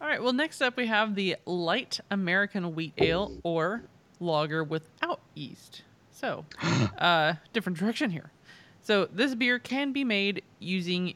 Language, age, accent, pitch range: English, 20-39, American, 160-220 Hz